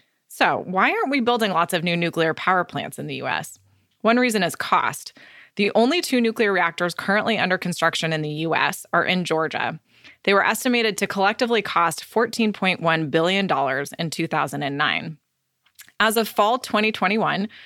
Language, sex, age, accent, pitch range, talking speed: English, female, 20-39, American, 165-210 Hz, 155 wpm